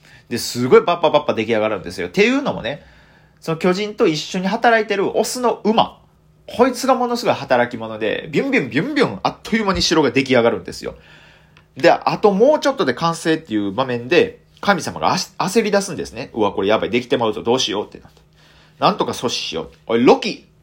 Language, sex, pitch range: Japanese, male, 120-190 Hz